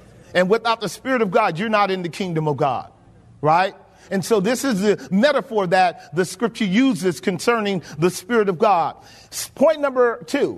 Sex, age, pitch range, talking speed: male, 40-59, 175-245 Hz, 180 wpm